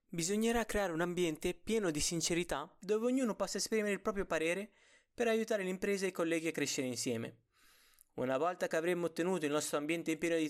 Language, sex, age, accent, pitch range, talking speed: Italian, male, 20-39, native, 155-210 Hz, 190 wpm